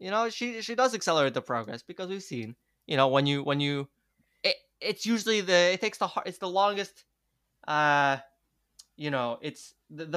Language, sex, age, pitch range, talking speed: English, male, 20-39, 130-170 Hz, 190 wpm